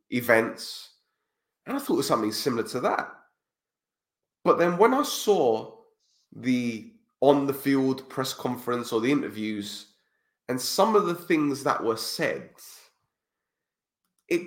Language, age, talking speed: English, 30-49, 135 wpm